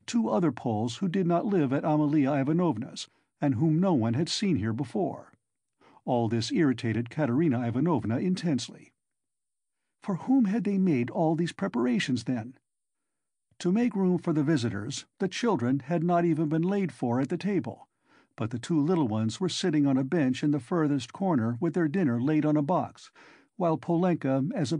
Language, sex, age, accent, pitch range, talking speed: English, male, 50-69, American, 130-175 Hz, 180 wpm